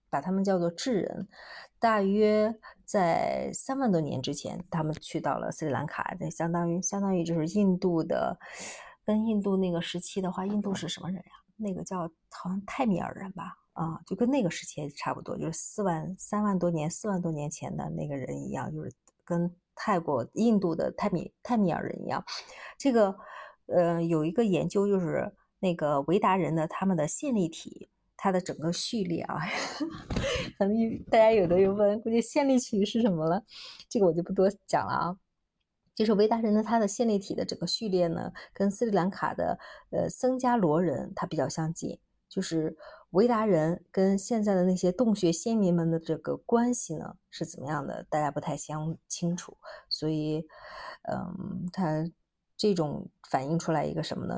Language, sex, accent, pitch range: Chinese, female, native, 165-210 Hz